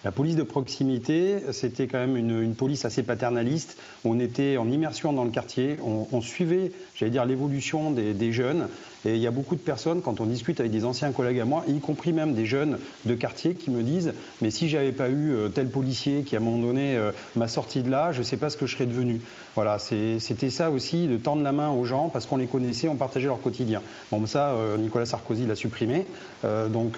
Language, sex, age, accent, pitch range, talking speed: French, male, 40-59, French, 115-150 Hz, 245 wpm